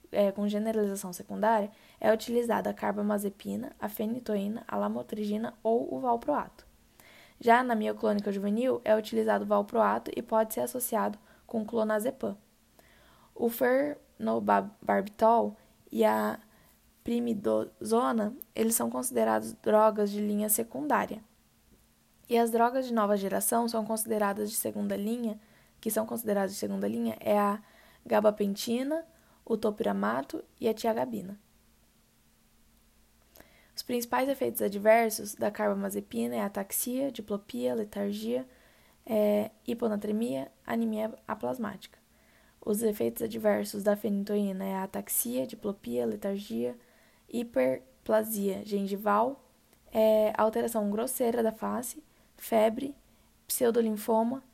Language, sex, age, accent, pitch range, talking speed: Portuguese, female, 10-29, Brazilian, 205-230 Hz, 110 wpm